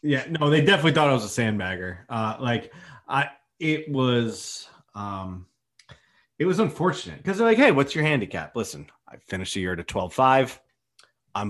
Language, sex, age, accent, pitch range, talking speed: English, male, 30-49, American, 100-145 Hz, 175 wpm